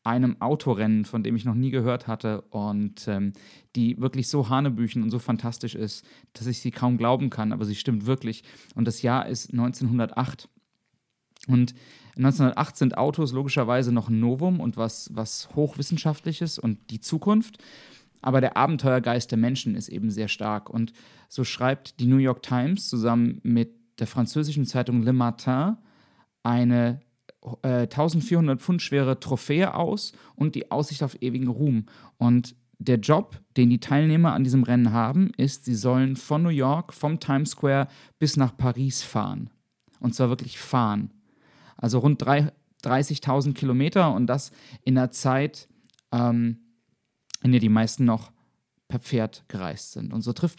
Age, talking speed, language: 30-49, 160 wpm, German